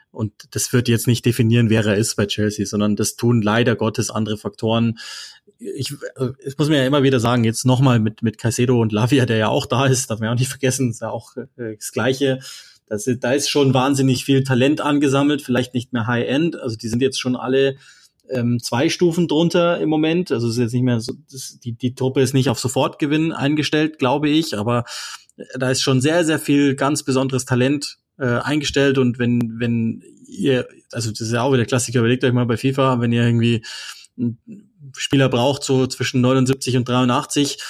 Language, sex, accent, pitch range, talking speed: German, male, German, 120-135 Hz, 205 wpm